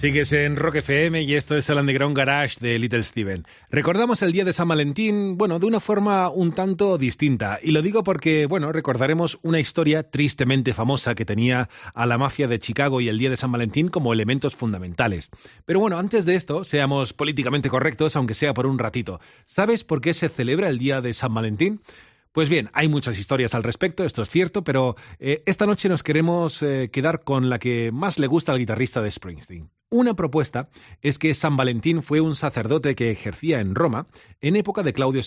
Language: Spanish